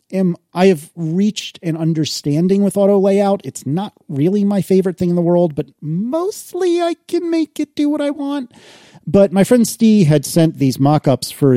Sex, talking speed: male, 190 wpm